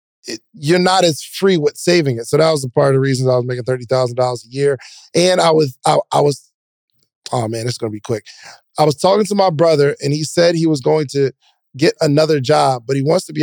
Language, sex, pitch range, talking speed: English, male, 135-170 Hz, 250 wpm